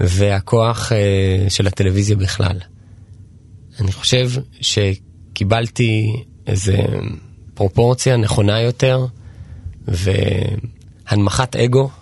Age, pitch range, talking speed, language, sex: 20-39, 100-120 Hz, 65 wpm, Hebrew, male